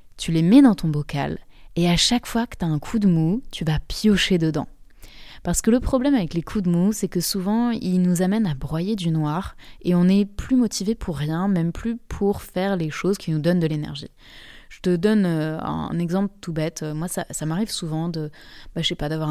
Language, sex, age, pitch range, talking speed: French, female, 20-39, 165-210 Hz, 235 wpm